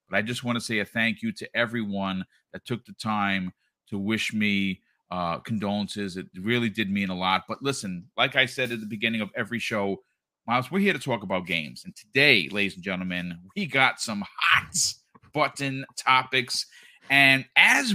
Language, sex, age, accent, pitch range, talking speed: English, male, 40-59, American, 110-145 Hz, 190 wpm